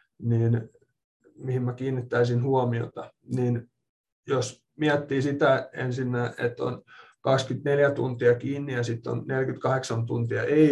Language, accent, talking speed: Finnish, native, 120 wpm